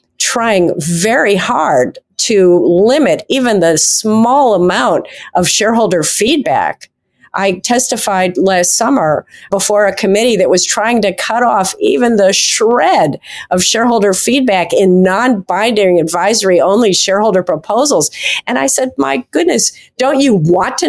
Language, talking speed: English, 130 wpm